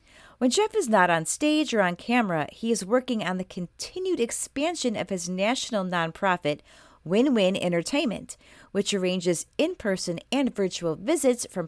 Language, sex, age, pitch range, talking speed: English, female, 30-49, 170-250 Hz, 150 wpm